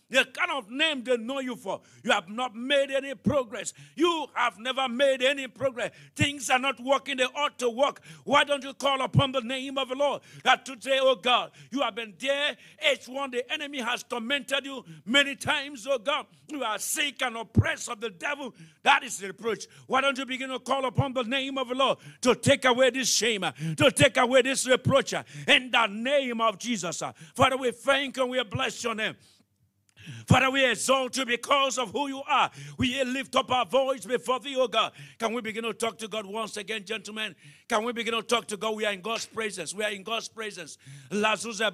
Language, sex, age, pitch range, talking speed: English, male, 50-69, 210-265 Hz, 205 wpm